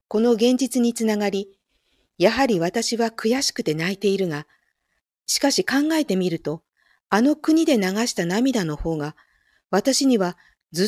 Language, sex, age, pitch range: Japanese, female, 50-69, 165-230 Hz